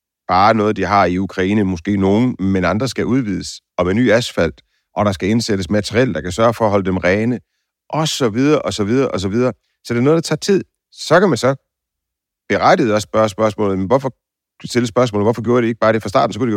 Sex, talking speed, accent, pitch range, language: male, 245 wpm, native, 95-115 Hz, Danish